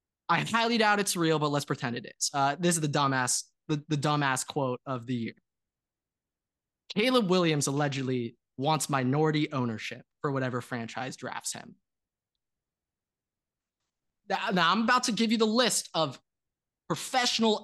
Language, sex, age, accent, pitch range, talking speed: English, male, 20-39, American, 130-165 Hz, 145 wpm